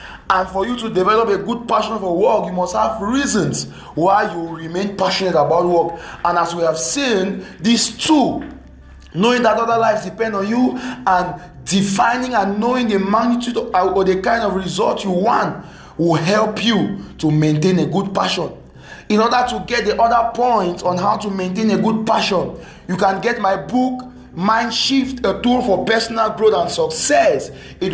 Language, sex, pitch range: English, male, 185-235 Hz